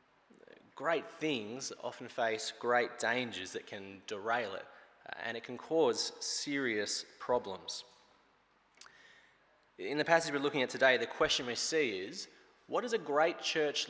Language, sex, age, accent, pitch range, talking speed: English, male, 20-39, Australian, 125-175 Hz, 140 wpm